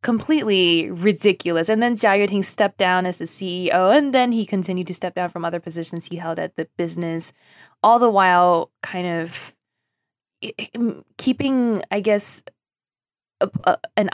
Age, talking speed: 20-39, 150 wpm